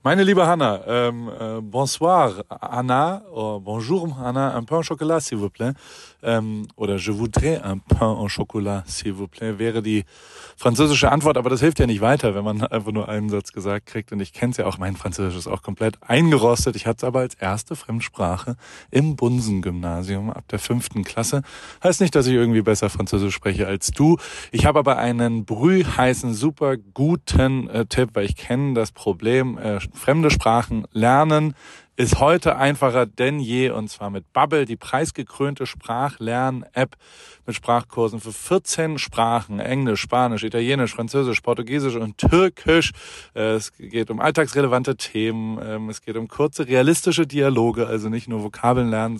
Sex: male